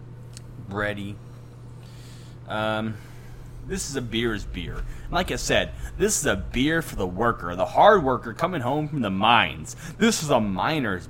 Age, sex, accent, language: 20-39, male, American, English